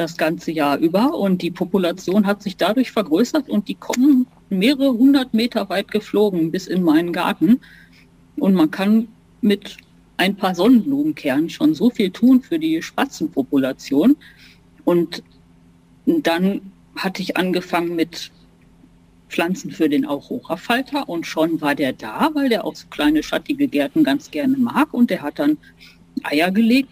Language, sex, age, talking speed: German, female, 50-69, 155 wpm